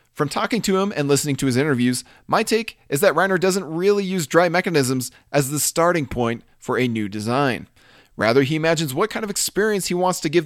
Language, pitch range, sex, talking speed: English, 130-185 Hz, male, 220 wpm